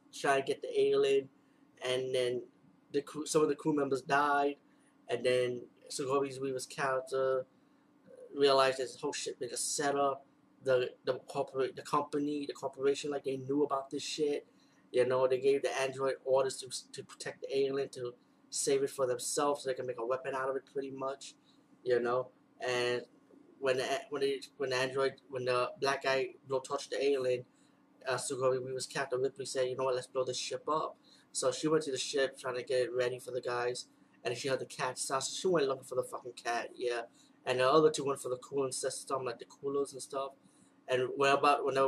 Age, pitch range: 20-39, 125-150 Hz